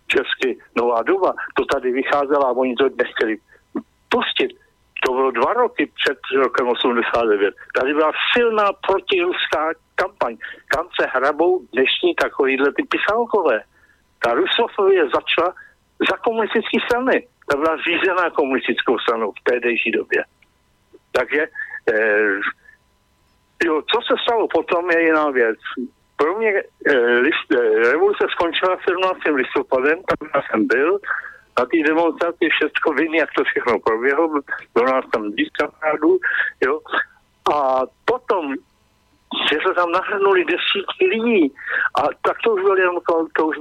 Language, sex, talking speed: Slovak, male, 130 wpm